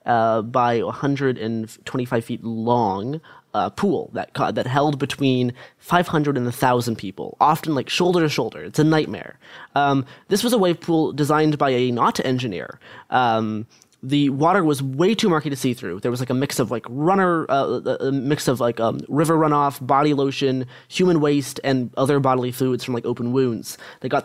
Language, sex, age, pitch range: English, male, 20-39, 120-150 Hz